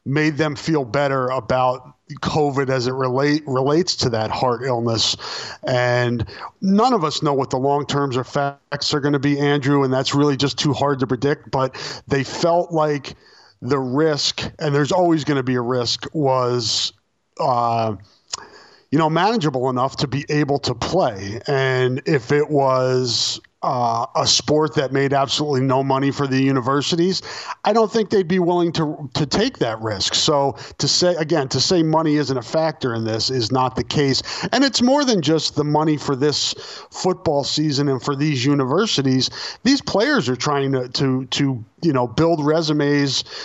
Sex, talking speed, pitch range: male, 180 wpm, 130-155 Hz